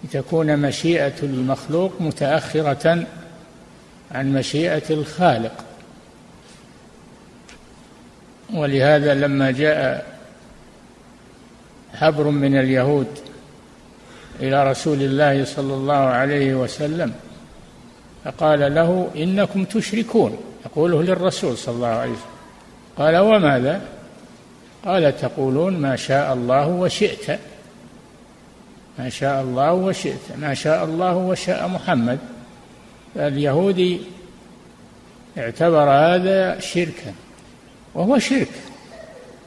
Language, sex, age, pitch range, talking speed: Arabic, male, 60-79, 135-170 Hz, 80 wpm